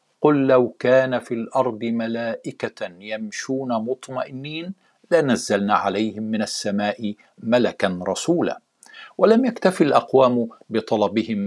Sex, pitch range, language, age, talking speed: male, 105-130 Hz, Arabic, 50-69, 95 wpm